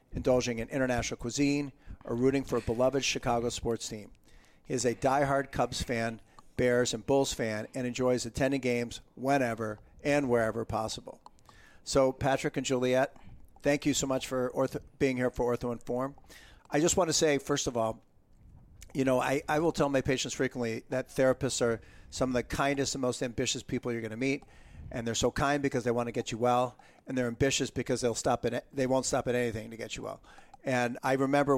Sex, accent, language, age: male, American, English, 50-69